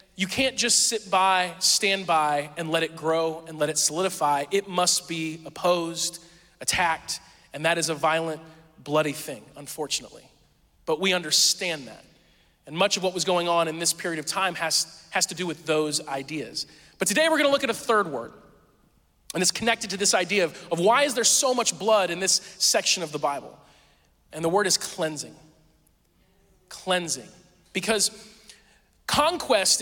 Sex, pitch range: male, 160-205 Hz